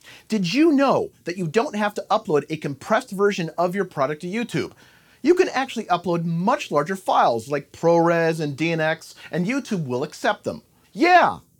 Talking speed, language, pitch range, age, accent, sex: 175 wpm, English, 165-220 Hz, 40-59, American, male